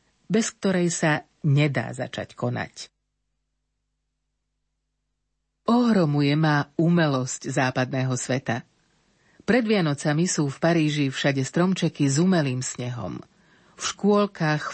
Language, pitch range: Slovak, 140-185 Hz